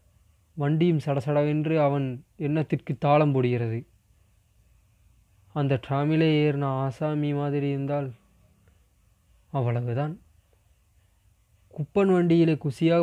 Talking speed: 75 wpm